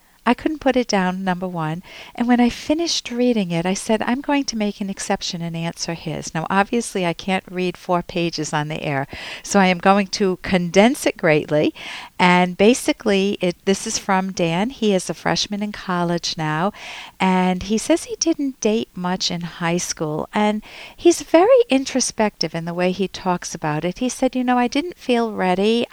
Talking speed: 195 wpm